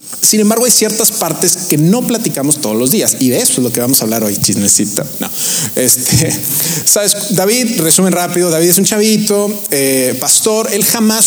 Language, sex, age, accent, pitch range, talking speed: Spanish, male, 30-49, Mexican, 150-195 Hz, 190 wpm